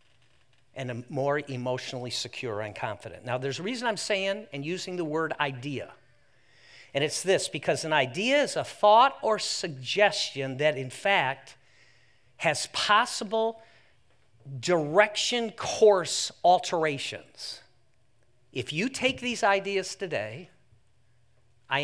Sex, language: male, English